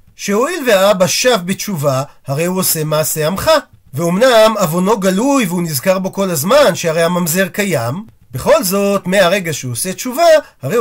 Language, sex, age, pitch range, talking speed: Hebrew, male, 40-59, 175-245 Hz, 150 wpm